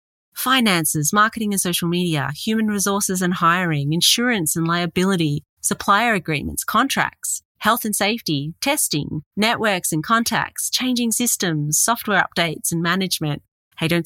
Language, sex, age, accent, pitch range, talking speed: English, female, 30-49, Australian, 145-200 Hz, 130 wpm